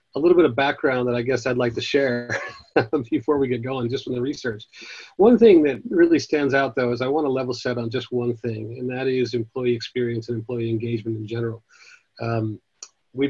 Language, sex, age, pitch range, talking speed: English, male, 40-59, 120-140 Hz, 220 wpm